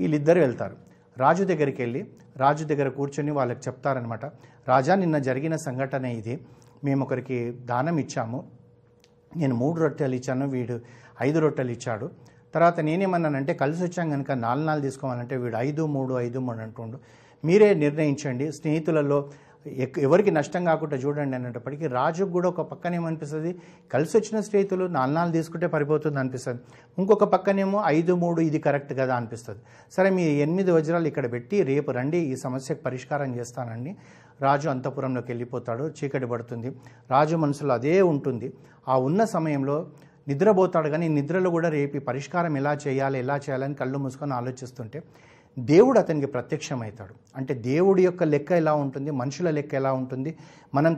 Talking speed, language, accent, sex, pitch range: 145 wpm, Telugu, native, male, 130-160 Hz